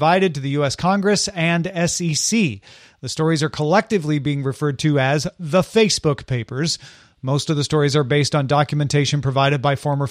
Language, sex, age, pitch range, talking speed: English, male, 40-59, 140-175 Hz, 165 wpm